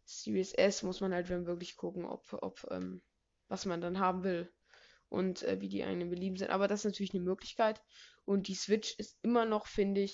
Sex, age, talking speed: female, 20-39, 220 wpm